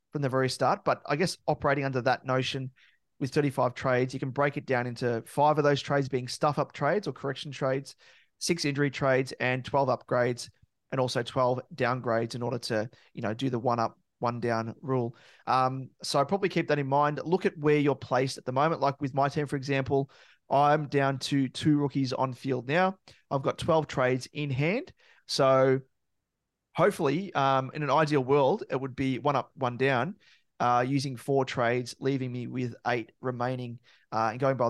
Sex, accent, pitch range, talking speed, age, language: male, Australian, 125-140 Hz, 195 wpm, 30-49, English